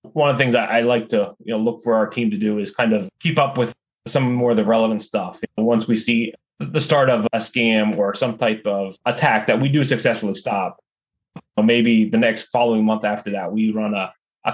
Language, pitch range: English, 110-130 Hz